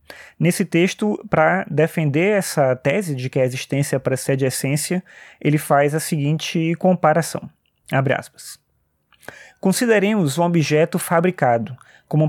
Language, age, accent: Portuguese, 20-39, Brazilian